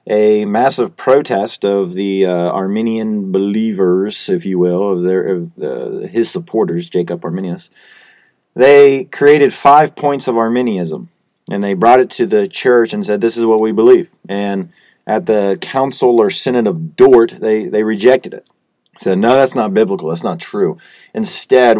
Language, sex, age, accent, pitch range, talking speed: English, male, 30-49, American, 95-140 Hz, 165 wpm